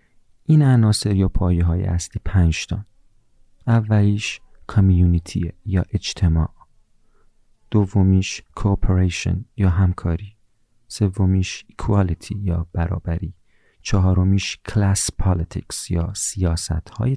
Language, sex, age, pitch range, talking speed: Persian, male, 40-59, 90-105 Hz, 85 wpm